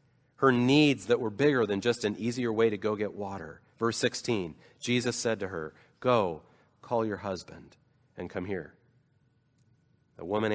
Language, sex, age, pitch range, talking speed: English, male, 40-59, 95-125 Hz, 165 wpm